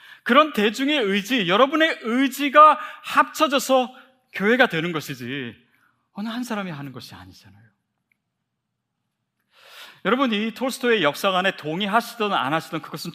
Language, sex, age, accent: Korean, male, 30-49, native